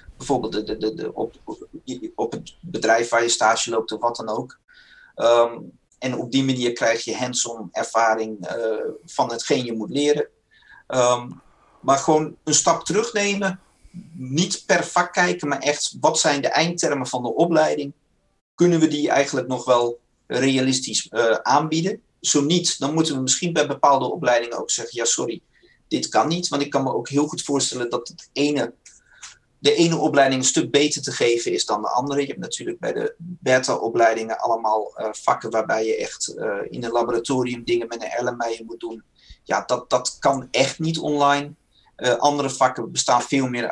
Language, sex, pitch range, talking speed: Dutch, male, 120-160 Hz, 175 wpm